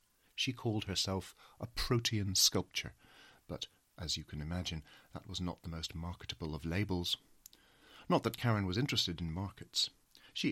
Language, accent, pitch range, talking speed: English, British, 85-110 Hz, 155 wpm